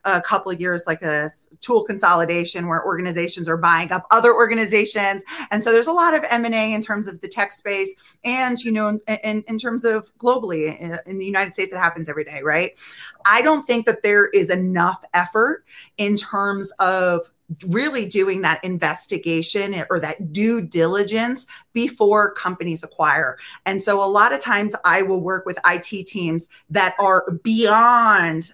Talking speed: 175 wpm